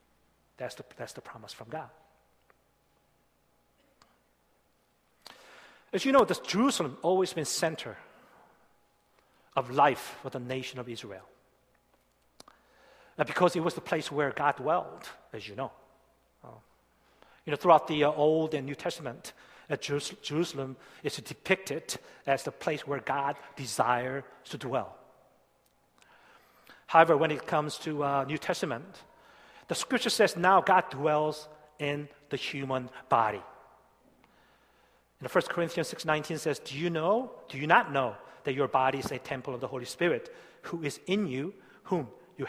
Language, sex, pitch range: Korean, male, 130-165 Hz